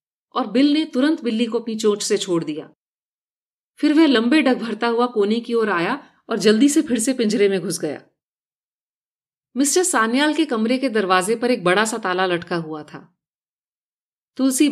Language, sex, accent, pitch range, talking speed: Hindi, female, native, 195-260 Hz, 185 wpm